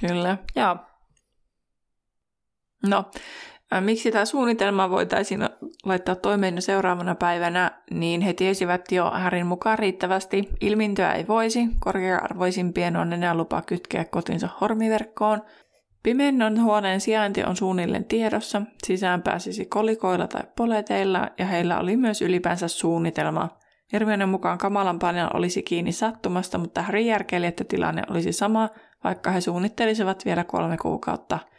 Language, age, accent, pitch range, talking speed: Finnish, 20-39, native, 175-210 Hz, 125 wpm